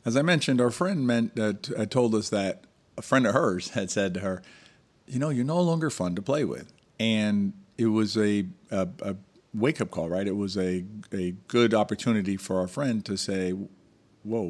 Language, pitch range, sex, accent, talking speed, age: English, 95-115 Hz, male, American, 200 wpm, 50-69